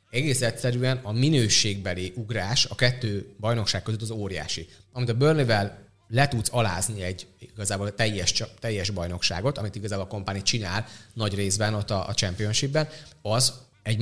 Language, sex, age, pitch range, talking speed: Hungarian, male, 30-49, 100-125 Hz, 150 wpm